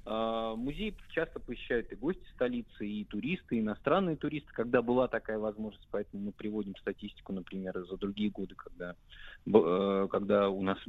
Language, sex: Russian, male